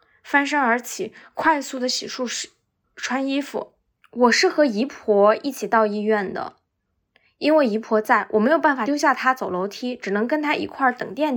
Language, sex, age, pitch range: Chinese, female, 10-29, 220-285 Hz